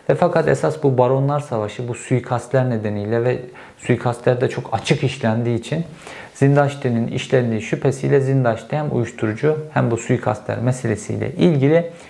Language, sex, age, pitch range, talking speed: Turkish, male, 50-69, 115-150 Hz, 135 wpm